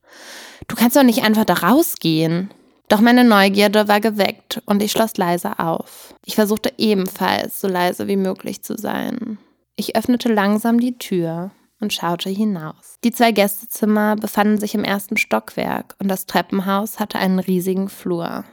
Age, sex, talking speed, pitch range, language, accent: 20-39, female, 160 wpm, 185-225 Hz, German, German